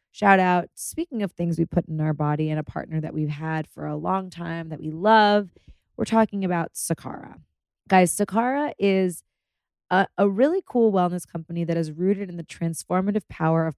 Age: 20-39